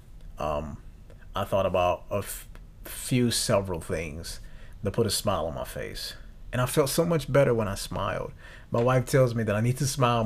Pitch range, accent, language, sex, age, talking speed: 95-125 Hz, American, English, male, 30-49, 195 wpm